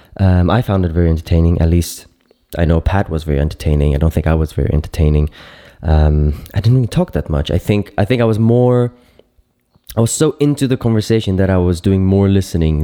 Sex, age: male, 20-39